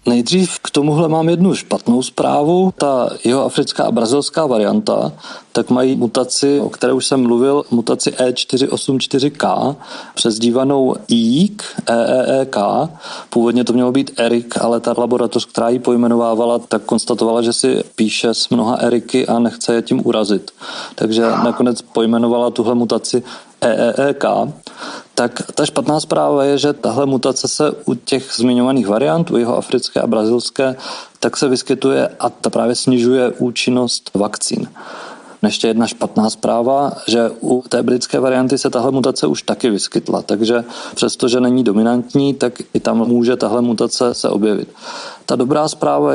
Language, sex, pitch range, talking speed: Czech, male, 115-135 Hz, 145 wpm